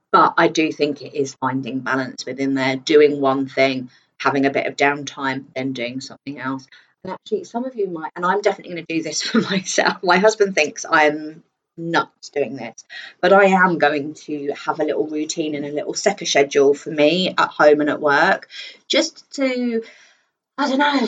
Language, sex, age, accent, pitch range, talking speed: English, female, 30-49, British, 145-205 Hz, 200 wpm